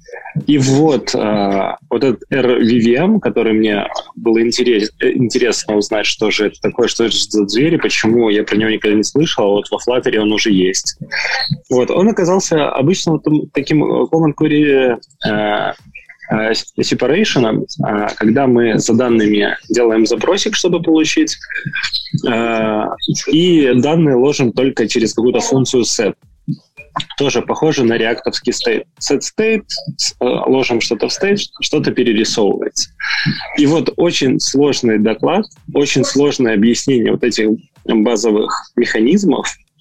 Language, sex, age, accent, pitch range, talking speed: Russian, male, 20-39, native, 110-150 Hz, 120 wpm